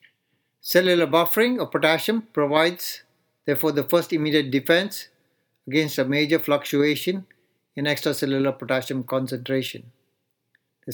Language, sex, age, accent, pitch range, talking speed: English, male, 60-79, Indian, 135-155 Hz, 105 wpm